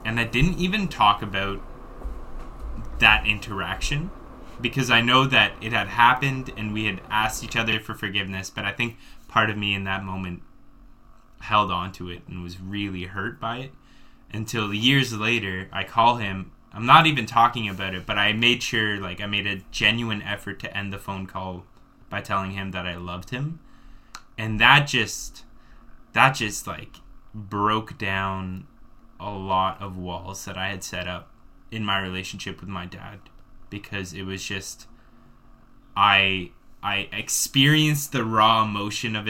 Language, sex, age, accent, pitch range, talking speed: English, male, 10-29, American, 95-115 Hz, 170 wpm